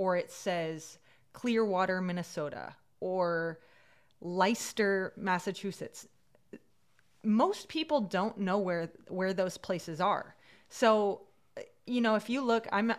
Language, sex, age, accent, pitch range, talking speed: English, female, 20-39, American, 180-215 Hz, 110 wpm